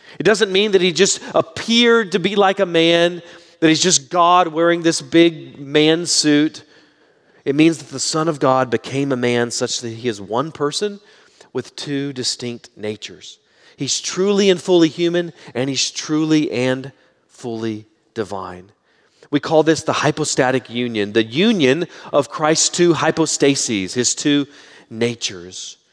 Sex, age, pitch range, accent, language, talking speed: male, 30-49, 120-165 Hz, American, English, 155 wpm